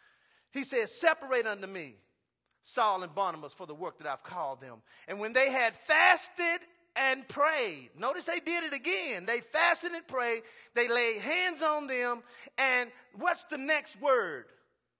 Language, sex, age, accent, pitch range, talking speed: English, male, 40-59, American, 180-285 Hz, 165 wpm